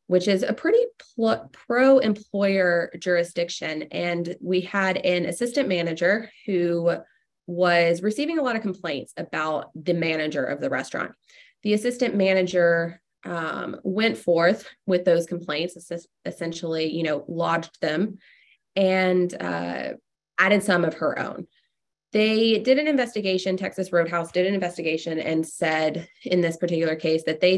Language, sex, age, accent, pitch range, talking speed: English, female, 20-39, American, 170-215 Hz, 140 wpm